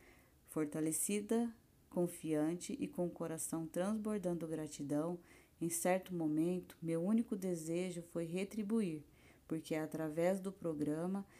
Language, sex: Portuguese, female